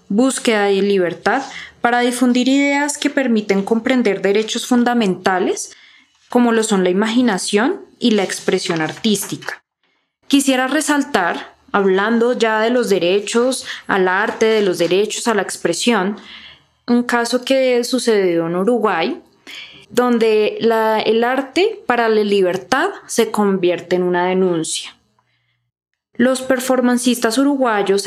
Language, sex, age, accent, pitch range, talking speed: Spanish, female, 20-39, Colombian, 200-250 Hz, 120 wpm